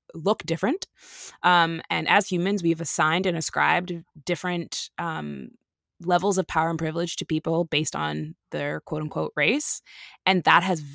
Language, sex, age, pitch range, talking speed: English, female, 20-39, 155-190 Hz, 150 wpm